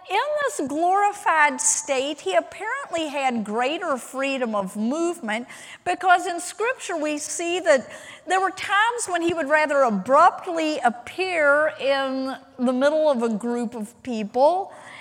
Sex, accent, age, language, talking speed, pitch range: female, American, 50-69, English, 135 wpm, 240-340 Hz